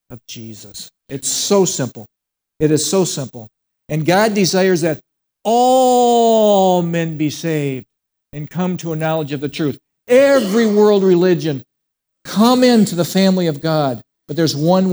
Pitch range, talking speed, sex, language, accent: 135-180 Hz, 150 wpm, male, English, American